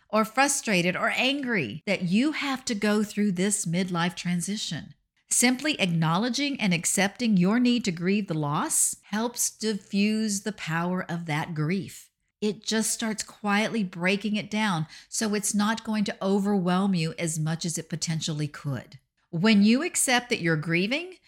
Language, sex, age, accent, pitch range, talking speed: English, female, 50-69, American, 165-235 Hz, 160 wpm